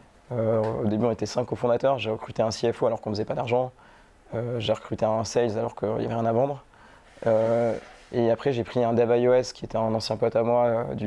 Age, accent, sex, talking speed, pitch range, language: 20-39, French, male, 250 wpm, 110-120 Hz, French